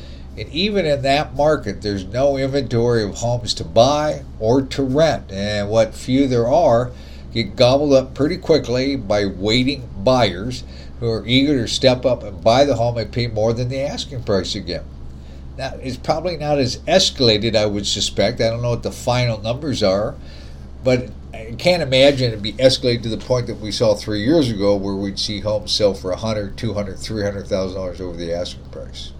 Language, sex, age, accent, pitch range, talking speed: English, male, 50-69, American, 100-135 Hz, 205 wpm